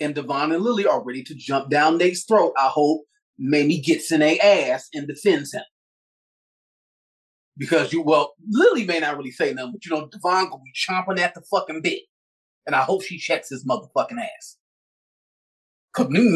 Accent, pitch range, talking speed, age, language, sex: American, 150-230 Hz, 185 wpm, 30-49, English, male